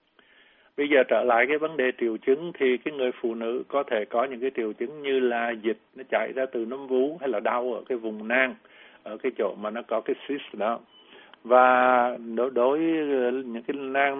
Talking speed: 220 wpm